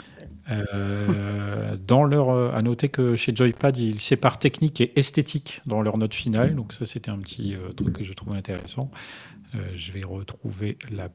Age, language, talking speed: 40-59, French, 185 wpm